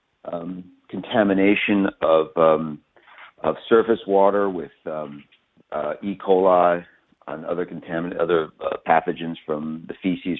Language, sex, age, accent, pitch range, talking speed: English, male, 50-69, American, 80-105 Hz, 120 wpm